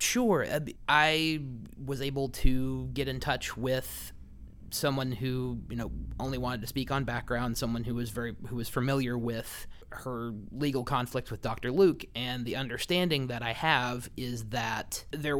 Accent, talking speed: American, 165 wpm